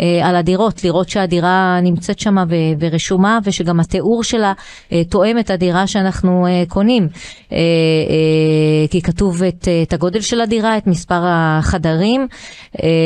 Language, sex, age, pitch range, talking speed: Hebrew, female, 20-39, 170-200 Hz, 120 wpm